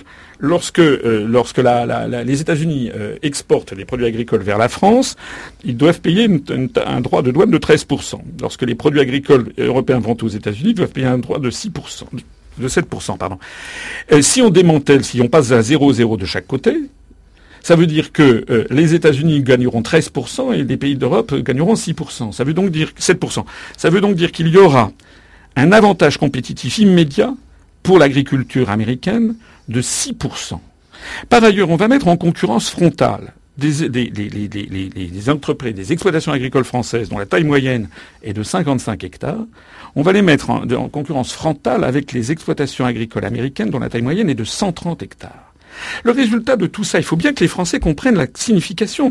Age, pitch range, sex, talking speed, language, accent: 50-69, 125-180 Hz, male, 195 wpm, French, French